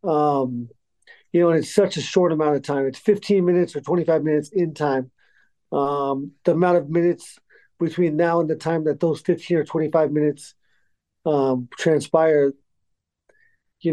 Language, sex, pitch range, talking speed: English, male, 145-175 Hz, 160 wpm